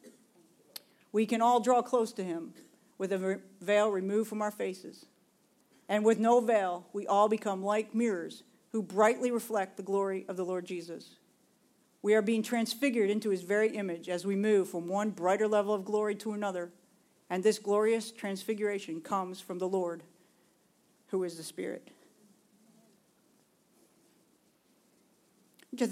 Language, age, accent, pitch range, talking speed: English, 50-69, American, 190-235 Hz, 150 wpm